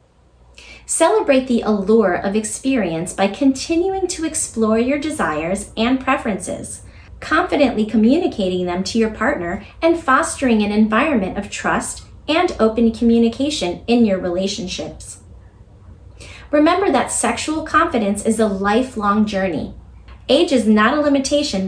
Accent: American